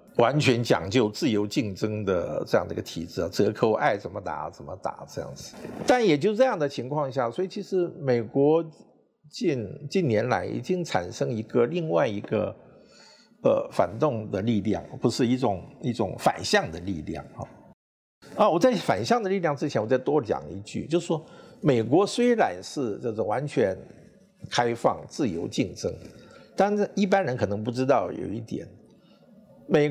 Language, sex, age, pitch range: Chinese, male, 50-69, 110-185 Hz